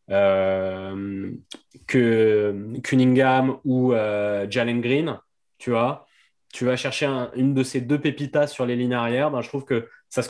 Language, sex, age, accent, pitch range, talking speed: French, male, 20-39, French, 115-135 Hz, 150 wpm